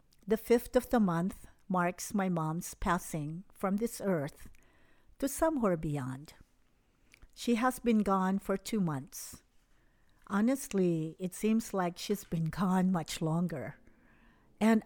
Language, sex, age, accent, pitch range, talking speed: English, female, 50-69, American, 170-245 Hz, 130 wpm